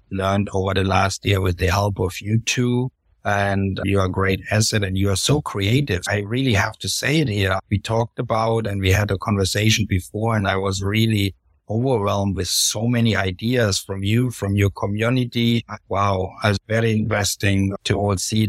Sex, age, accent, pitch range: male, 60-79, German, 100-115 Hz